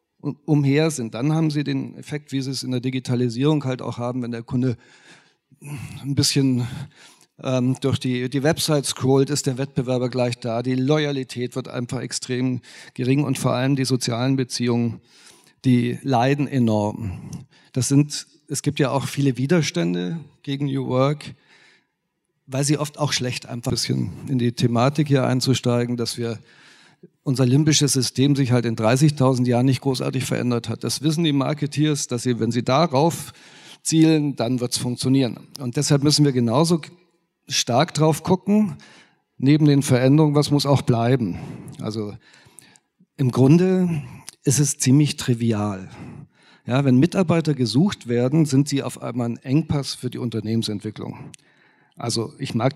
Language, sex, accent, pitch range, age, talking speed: German, male, German, 125-150 Hz, 40-59, 155 wpm